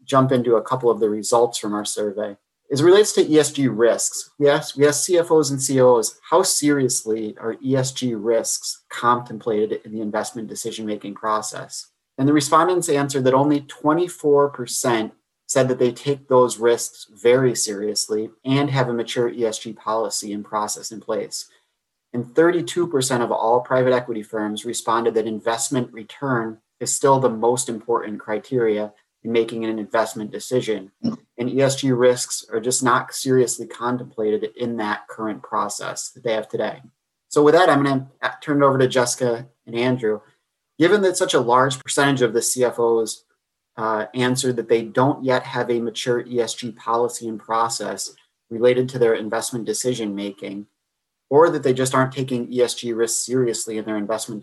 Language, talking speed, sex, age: English, 160 wpm, male, 30-49